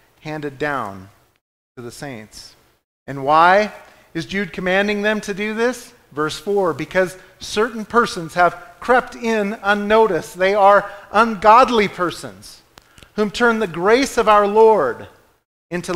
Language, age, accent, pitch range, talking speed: English, 40-59, American, 170-225 Hz, 130 wpm